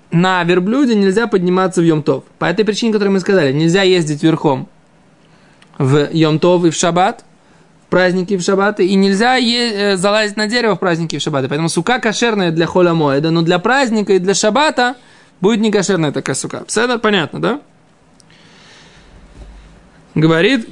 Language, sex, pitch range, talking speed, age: Russian, male, 160-215 Hz, 160 wpm, 20-39